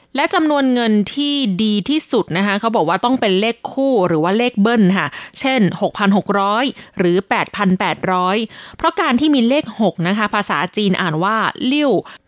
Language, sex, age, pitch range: Thai, female, 20-39, 195-280 Hz